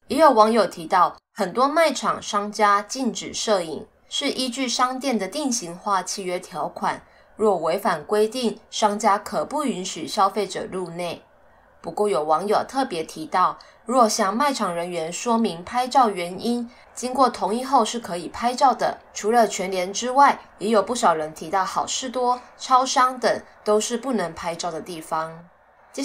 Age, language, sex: 20-39, Chinese, female